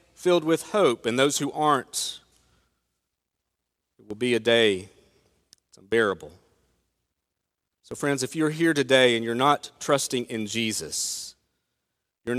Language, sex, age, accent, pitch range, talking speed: English, male, 40-59, American, 130-180 Hz, 130 wpm